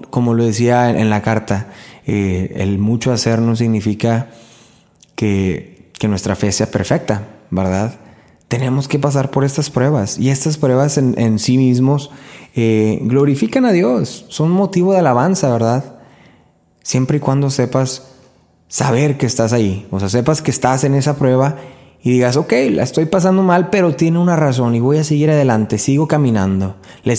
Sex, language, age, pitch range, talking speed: male, Spanish, 20-39, 110-145 Hz, 170 wpm